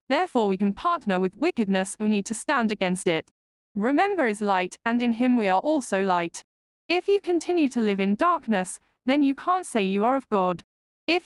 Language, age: English, 10-29